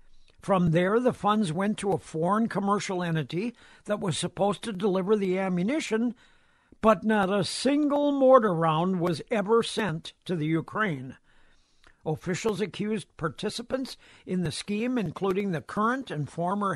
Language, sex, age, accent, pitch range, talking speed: English, male, 60-79, American, 165-220 Hz, 145 wpm